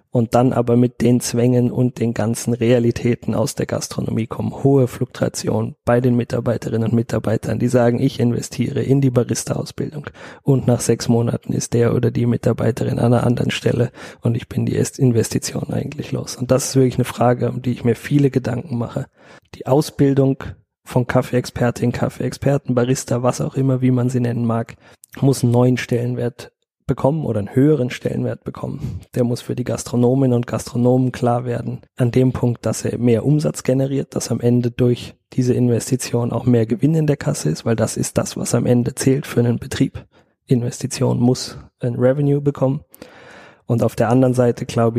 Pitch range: 115-130 Hz